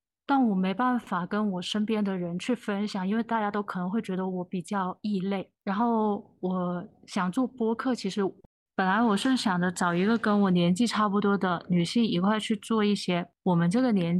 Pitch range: 180-225 Hz